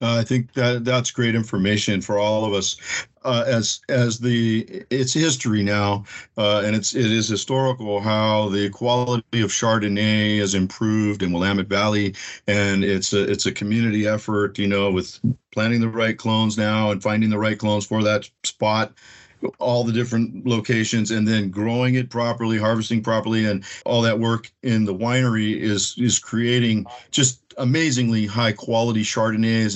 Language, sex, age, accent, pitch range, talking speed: English, male, 50-69, American, 105-125 Hz, 165 wpm